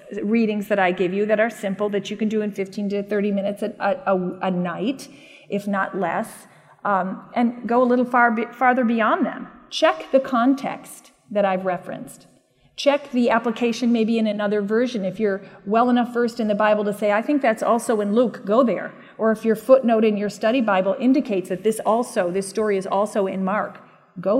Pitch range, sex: 200-255 Hz, female